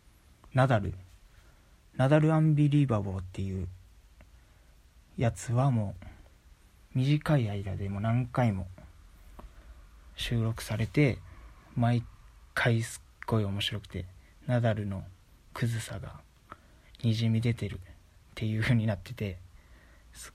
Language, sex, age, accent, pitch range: Japanese, male, 40-59, native, 85-120 Hz